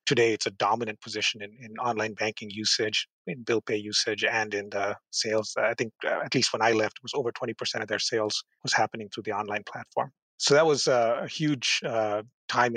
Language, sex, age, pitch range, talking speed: English, male, 30-49, 110-125 Hz, 215 wpm